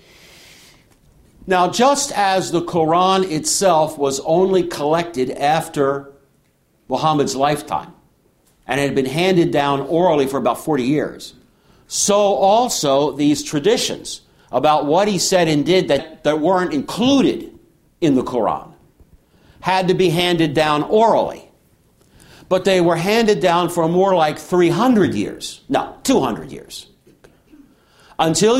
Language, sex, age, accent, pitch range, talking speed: English, male, 60-79, American, 150-190 Hz, 125 wpm